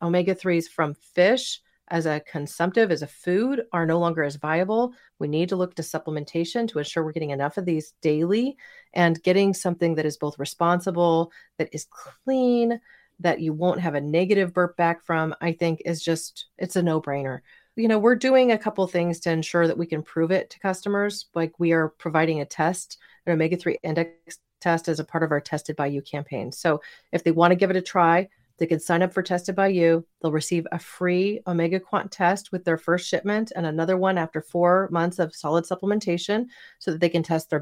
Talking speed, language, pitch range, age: 210 wpm, English, 165-195 Hz, 40-59